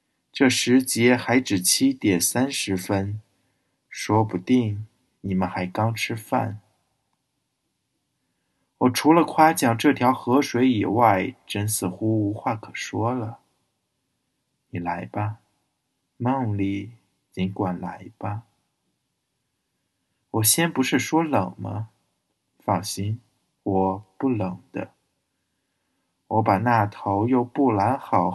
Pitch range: 100-120 Hz